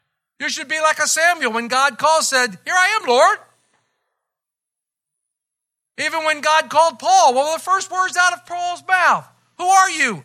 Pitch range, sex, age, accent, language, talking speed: 205-310 Hz, male, 50-69, American, English, 185 wpm